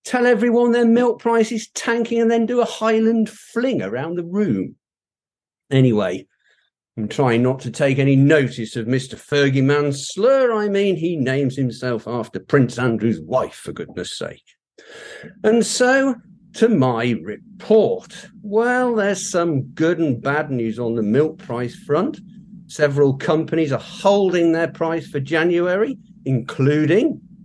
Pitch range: 125-195 Hz